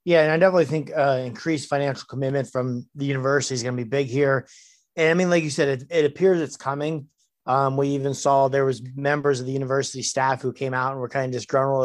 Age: 30-49